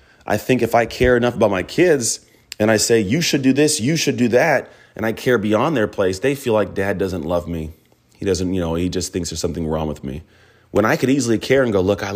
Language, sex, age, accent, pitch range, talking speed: English, male, 30-49, American, 95-115 Hz, 265 wpm